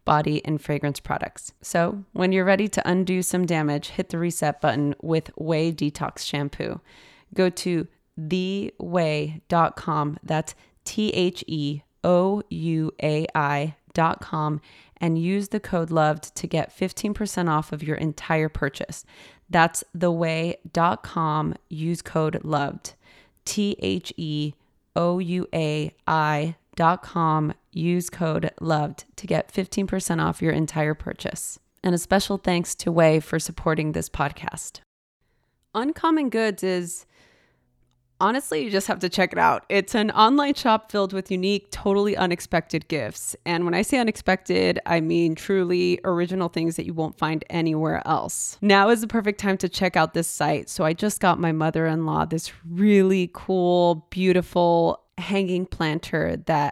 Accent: American